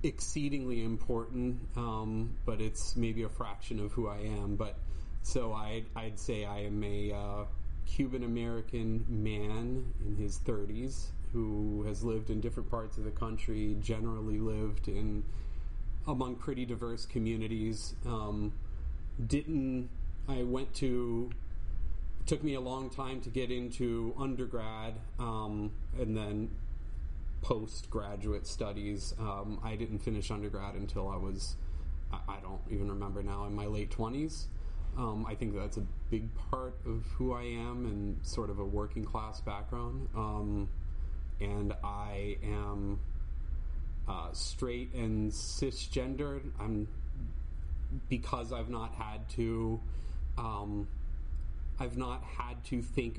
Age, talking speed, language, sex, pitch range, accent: 30-49, 135 wpm, English, male, 100-115 Hz, American